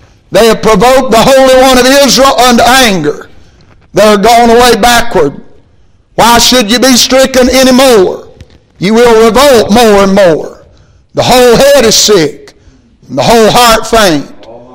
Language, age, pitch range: English, 60-79, 215-255 Hz